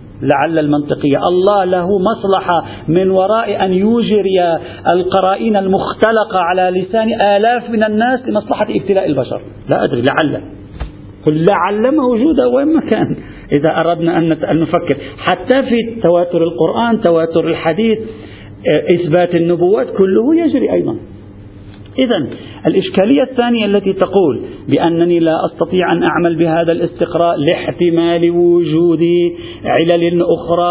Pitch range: 165-220 Hz